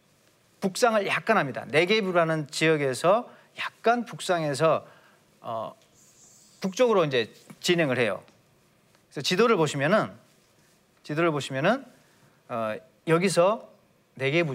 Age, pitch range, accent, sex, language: 40-59, 155-230 Hz, native, male, Korean